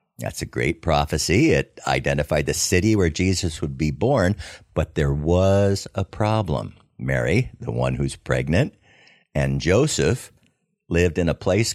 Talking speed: 150 wpm